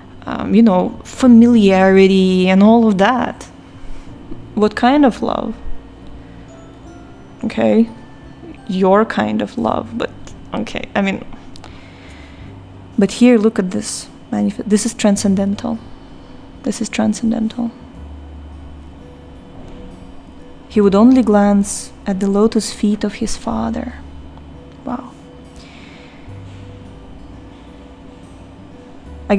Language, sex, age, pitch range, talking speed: English, female, 20-39, 185-225 Hz, 90 wpm